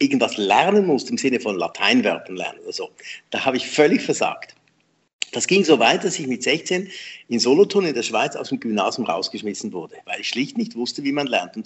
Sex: male